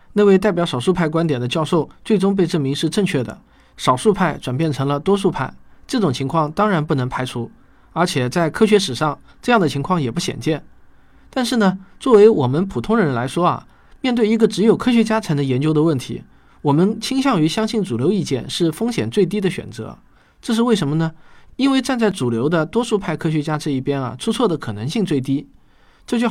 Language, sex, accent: Chinese, male, native